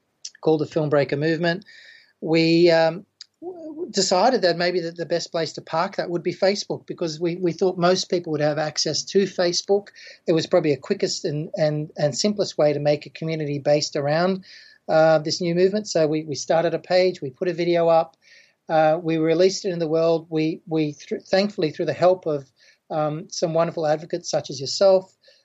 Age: 40-59